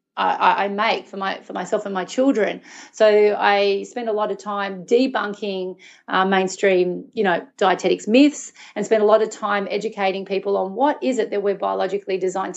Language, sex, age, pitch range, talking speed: English, female, 30-49, 190-235 Hz, 185 wpm